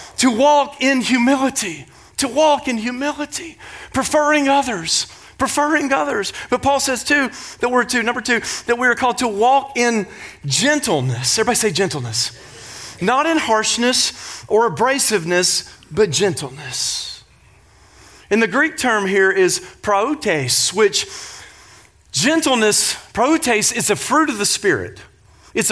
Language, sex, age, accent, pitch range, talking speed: English, male, 40-59, American, 165-255 Hz, 130 wpm